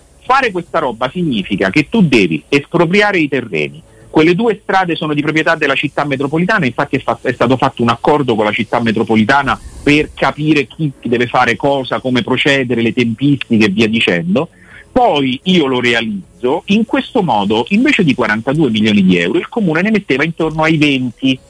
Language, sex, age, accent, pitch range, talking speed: Italian, male, 40-59, native, 120-180 Hz, 180 wpm